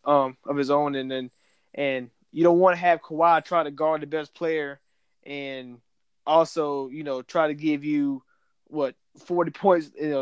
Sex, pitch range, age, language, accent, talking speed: male, 140-170 Hz, 20-39, English, American, 180 wpm